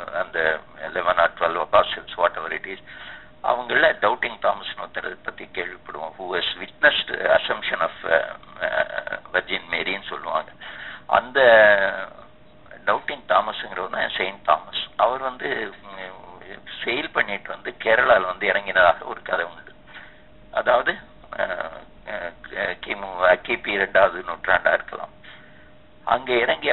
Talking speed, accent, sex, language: 65 wpm, native, male, Tamil